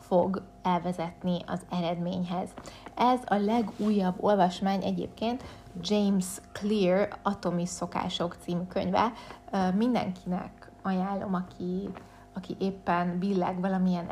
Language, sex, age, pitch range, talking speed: Hungarian, female, 30-49, 180-205 Hz, 90 wpm